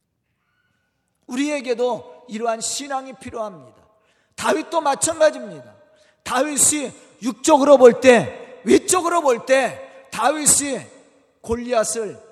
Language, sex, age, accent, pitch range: Korean, male, 40-59, native, 235-300 Hz